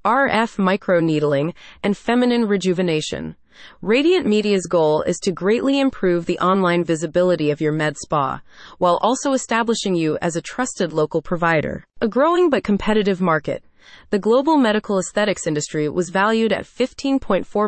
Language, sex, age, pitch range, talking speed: English, female, 30-49, 170-225 Hz, 145 wpm